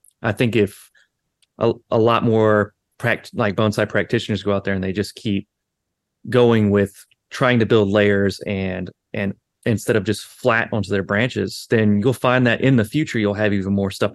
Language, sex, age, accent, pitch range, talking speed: English, male, 30-49, American, 100-120 Hz, 185 wpm